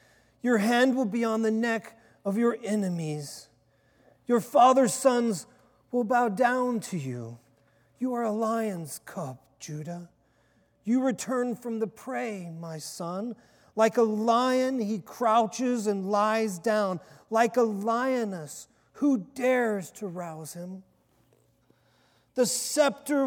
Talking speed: 125 wpm